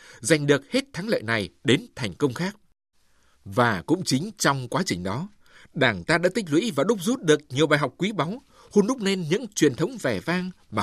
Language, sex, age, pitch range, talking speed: Vietnamese, male, 60-79, 130-200 Hz, 220 wpm